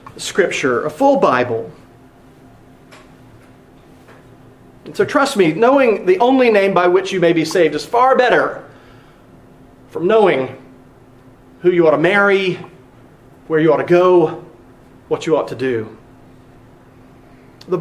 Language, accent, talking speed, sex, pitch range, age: English, American, 130 wpm, male, 170-280 Hz, 40-59